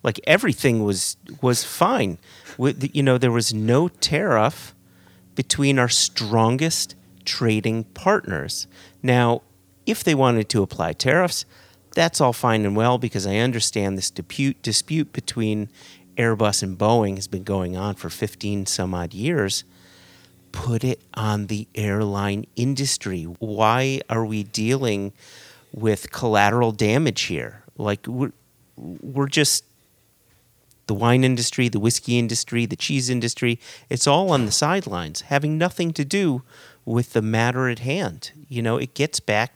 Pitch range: 100-135 Hz